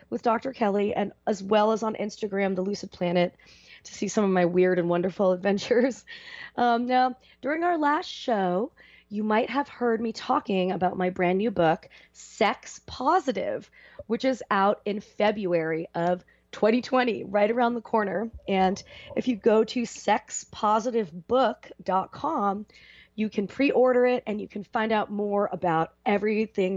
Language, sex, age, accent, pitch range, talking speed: English, female, 30-49, American, 180-235 Hz, 155 wpm